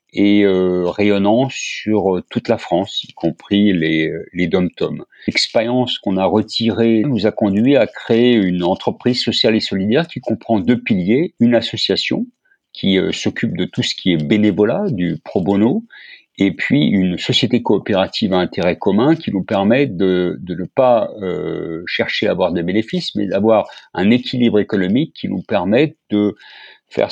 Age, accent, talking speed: 50-69, French, 170 wpm